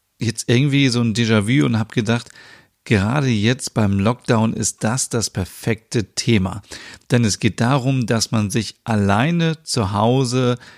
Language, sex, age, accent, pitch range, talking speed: German, male, 40-59, German, 105-125 Hz, 150 wpm